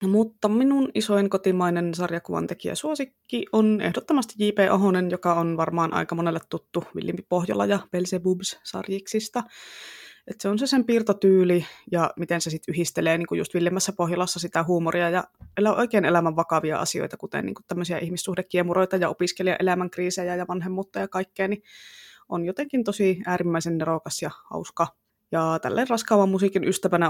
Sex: female